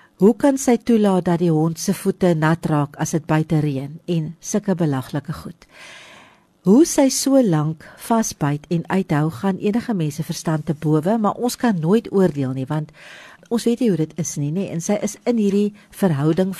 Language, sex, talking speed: English, female, 190 wpm